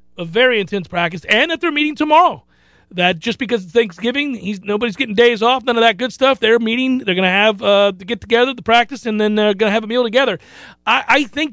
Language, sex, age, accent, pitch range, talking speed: English, male, 40-59, American, 180-230 Hz, 250 wpm